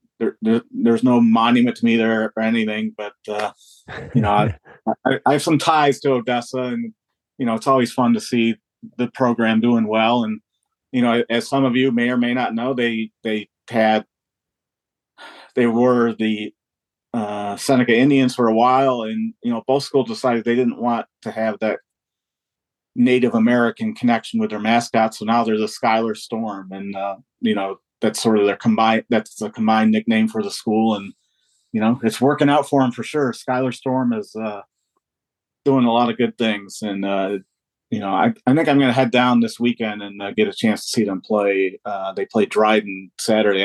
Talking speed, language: 200 wpm, English